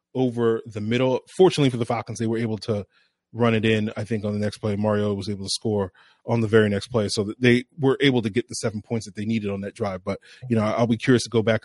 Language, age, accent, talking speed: English, 30-49, American, 280 wpm